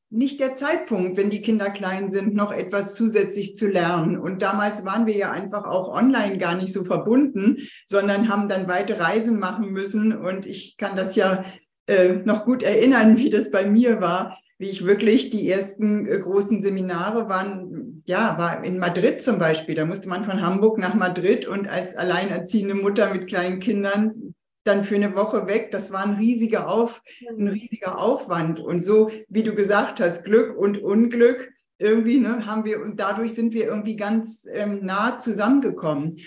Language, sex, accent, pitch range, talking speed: German, female, German, 195-230 Hz, 180 wpm